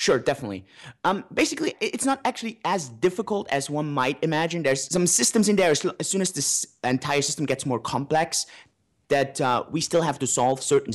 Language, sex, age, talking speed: English, male, 30-49, 190 wpm